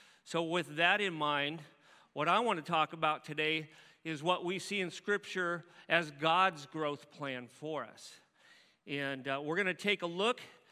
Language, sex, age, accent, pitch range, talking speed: English, male, 40-59, American, 155-190 Hz, 180 wpm